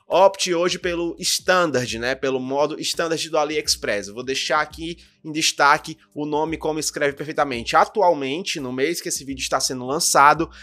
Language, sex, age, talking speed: Portuguese, male, 20-39, 170 wpm